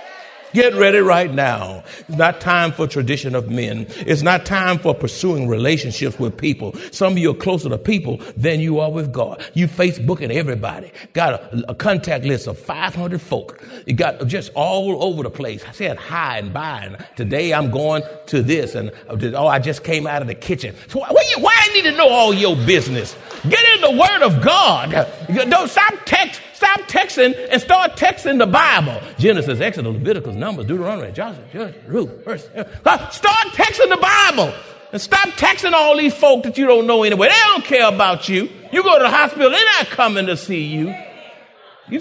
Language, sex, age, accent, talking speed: English, male, 50-69, American, 200 wpm